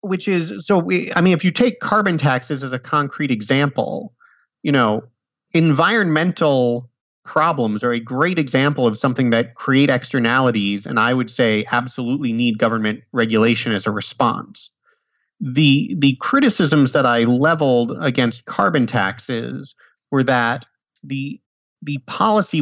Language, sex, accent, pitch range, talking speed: English, male, American, 115-150 Hz, 140 wpm